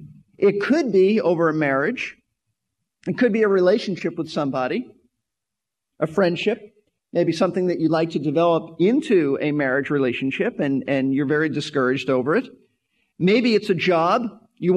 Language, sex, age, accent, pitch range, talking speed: English, male, 40-59, American, 155-210 Hz, 155 wpm